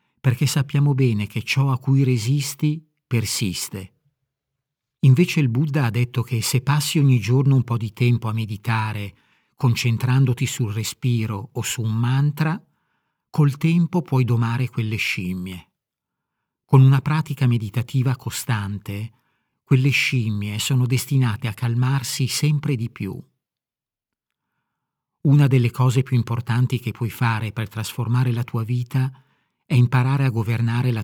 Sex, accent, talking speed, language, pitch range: male, native, 135 wpm, Italian, 115-140 Hz